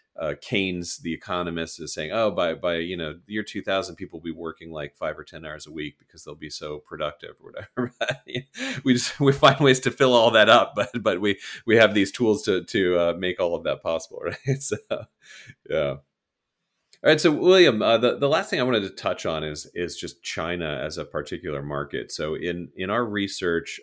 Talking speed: 215 wpm